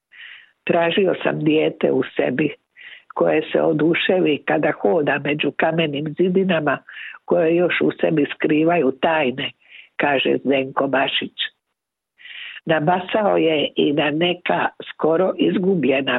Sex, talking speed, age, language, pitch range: female, 110 wpm, 60-79, Croatian, 140-175 Hz